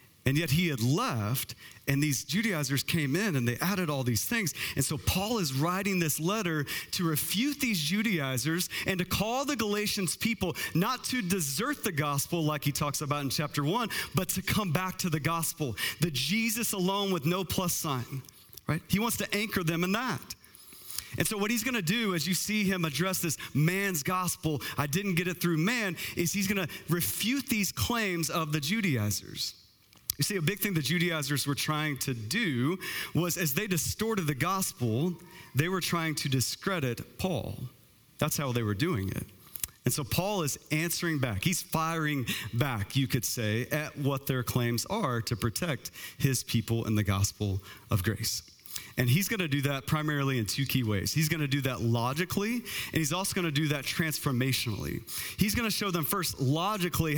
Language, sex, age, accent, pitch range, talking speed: English, male, 40-59, American, 135-190 Hz, 190 wpm